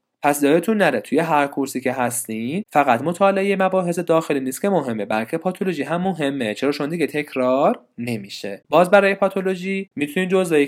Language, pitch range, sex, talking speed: Persian, 130-190 Hz, male, 155 wpm